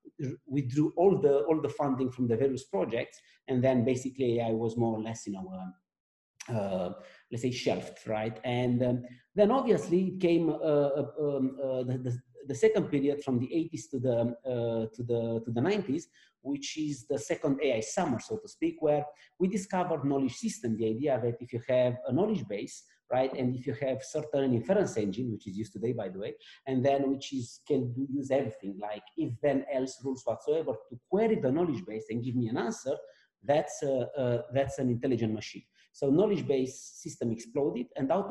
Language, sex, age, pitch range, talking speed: English, male, 50-69, 120-155 Hz, 195 wpm